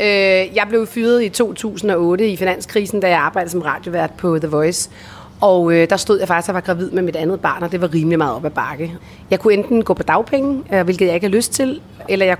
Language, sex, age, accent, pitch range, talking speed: Danish, female, 30-49, native, 180-225 Hz, 245 wpm